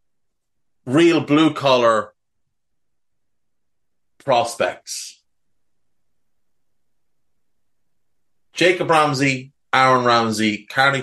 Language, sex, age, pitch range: English, male, 30-49, 100-135 Hz